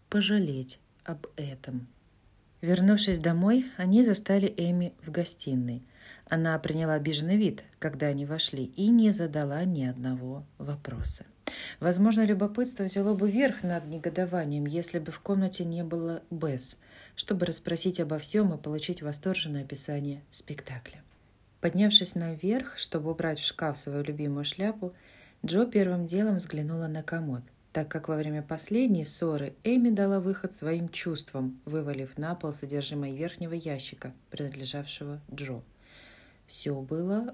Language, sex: Russian, female